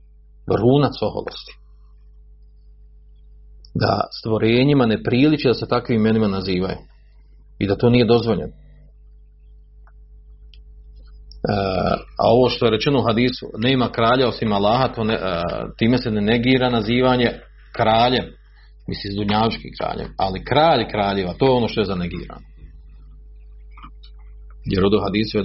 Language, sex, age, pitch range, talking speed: Croatian, male, 40-59, 75-120 Hz, 125 wpm